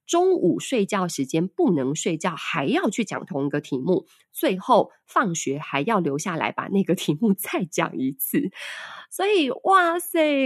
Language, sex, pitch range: Chinese, female, 165-270 Hz